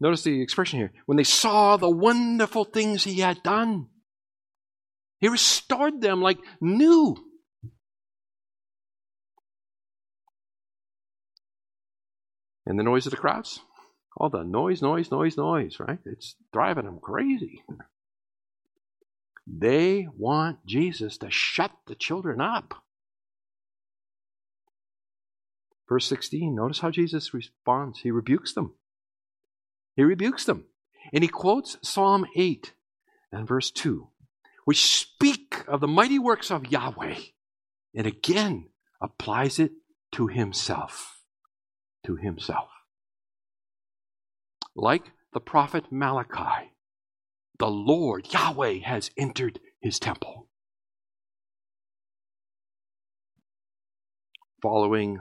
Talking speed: 100 wpm